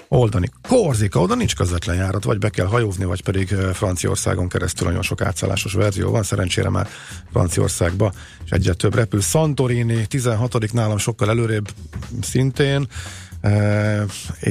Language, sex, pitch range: Hungarian, male, 95-115 Hz